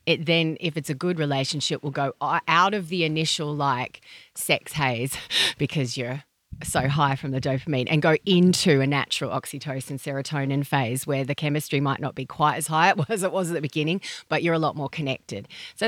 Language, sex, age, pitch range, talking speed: English, female, 30-49, 140-175 Hz, 200 wpm